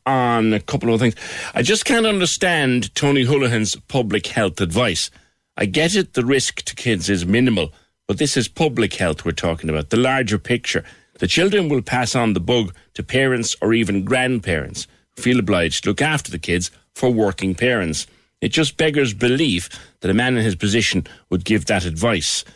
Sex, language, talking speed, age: male, English, 190 wpm, 60-79